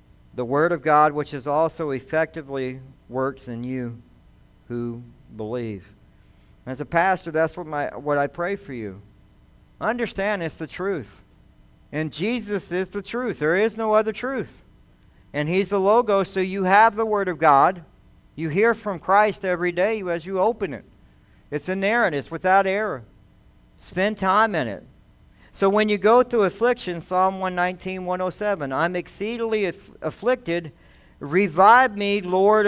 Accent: American